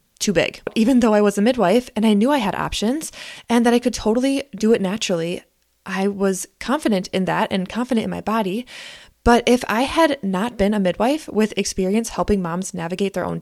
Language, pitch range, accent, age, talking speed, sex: English, 195-250 Hz, American, 20-39, 210 wpm, female